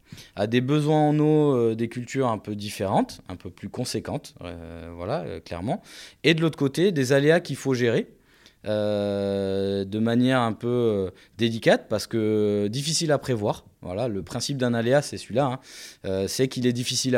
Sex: male